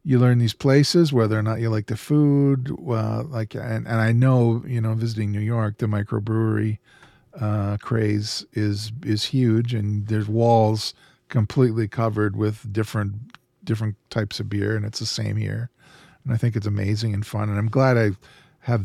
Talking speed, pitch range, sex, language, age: 180 wpm, 105-125 Hz, male, English, 40-59